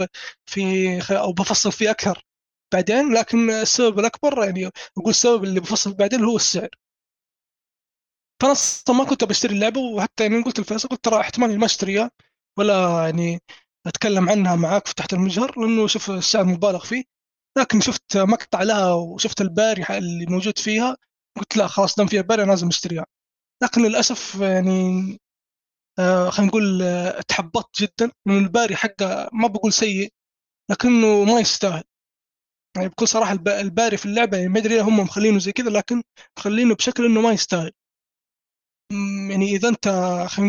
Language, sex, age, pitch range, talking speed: Arabic, male, 20-39, 190-225 Hz, 155 wpm